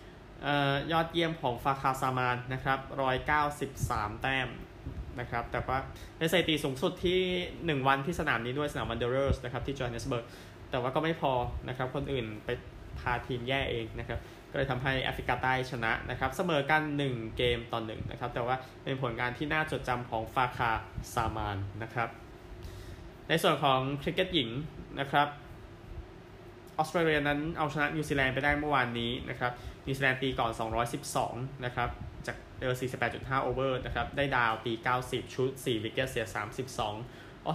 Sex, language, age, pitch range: male, Thai, 20-39, 120-145 Hz